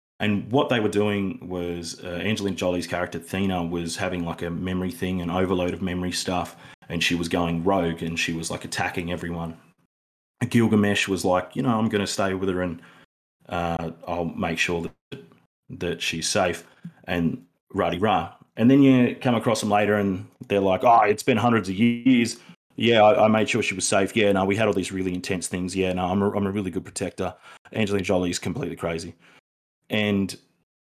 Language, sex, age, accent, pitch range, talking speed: English, male, 30-49, Australian, 90-110 Hz, 200 wpm